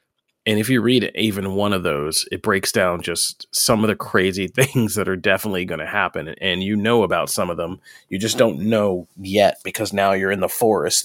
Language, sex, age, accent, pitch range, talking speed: English, male, 30-49, American, 90-105 Hz, 225 wpm